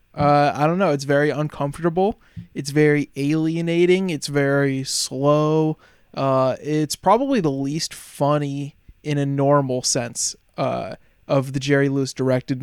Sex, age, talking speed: male, 20-39, 140 wpm